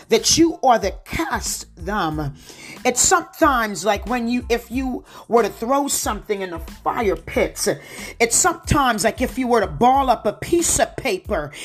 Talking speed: 175 wpm